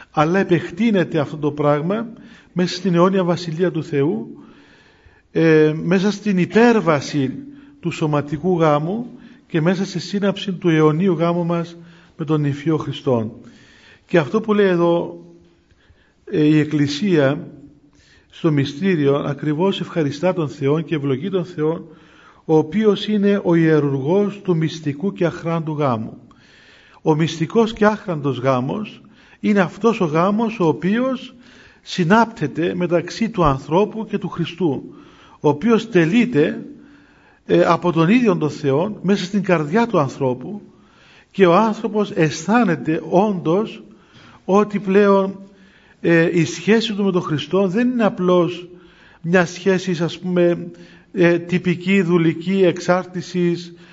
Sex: male